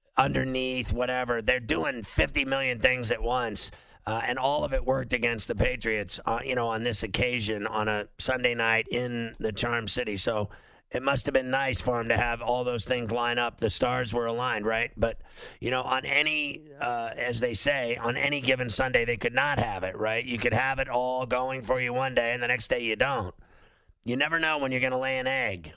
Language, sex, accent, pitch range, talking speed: English, male, American, 115-125 Hz, 225 wpm